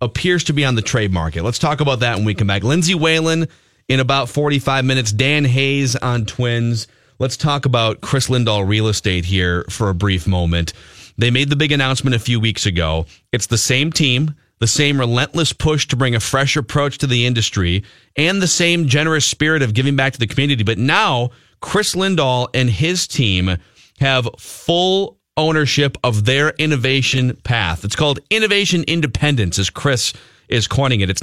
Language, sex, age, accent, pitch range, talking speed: English, male, 30-49, American, 115-150 Hz, 185 wpm